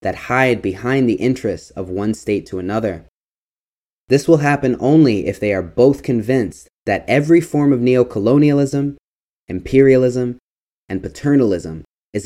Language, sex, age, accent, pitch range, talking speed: English, male, 20-39, American, 95-125 Hz, 135 wpm